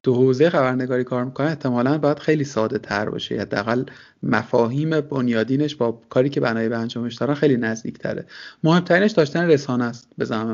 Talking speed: 165 wpm